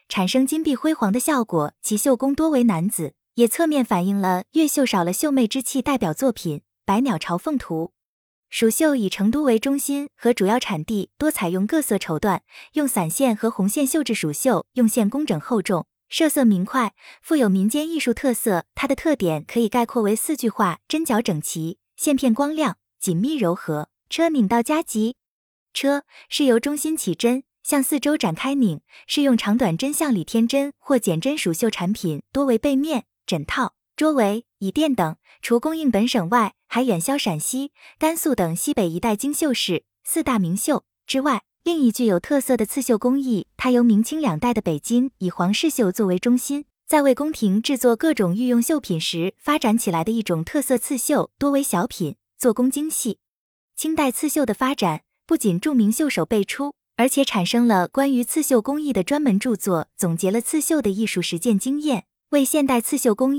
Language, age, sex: Chinese, 20-39, female